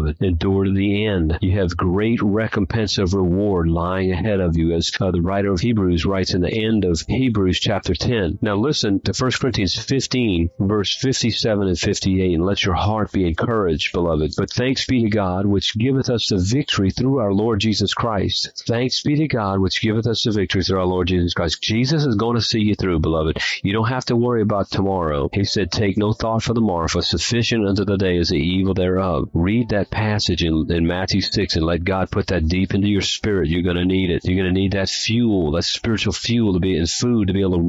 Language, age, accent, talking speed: English, 50-69, American, 230 wpm